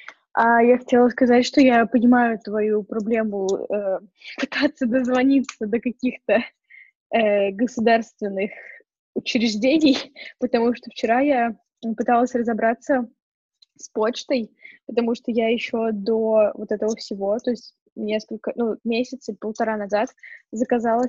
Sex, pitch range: female, 225-255 Hz